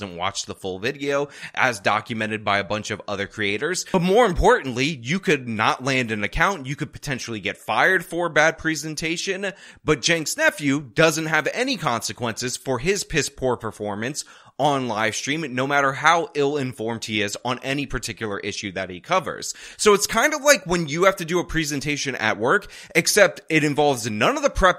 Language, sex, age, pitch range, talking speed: English, male, 20-39, 115-170 Hz, 195 wpm